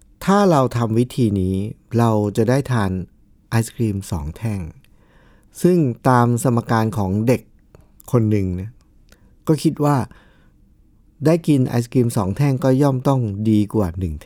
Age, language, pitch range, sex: 60-79, Thai, 95-120 Hz, male